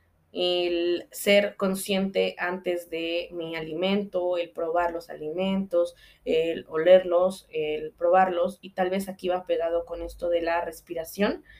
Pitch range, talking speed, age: 170-200 Hz, 135 wpm, 20-39